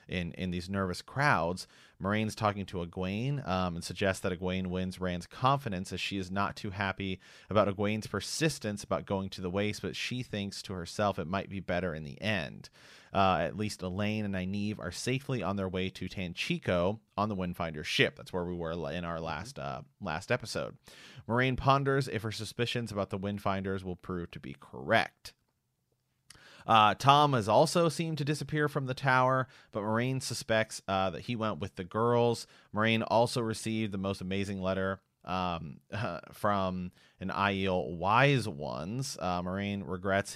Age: 30-49